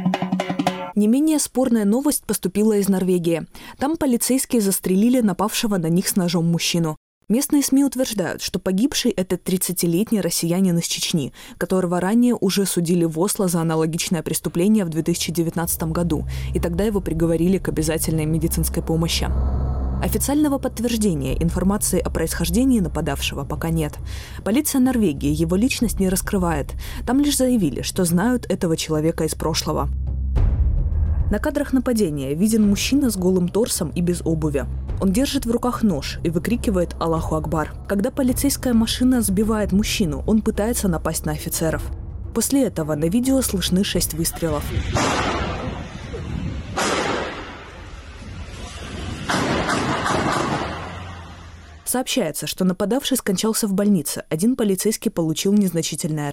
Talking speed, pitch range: 125 wpm, 160-220 Hz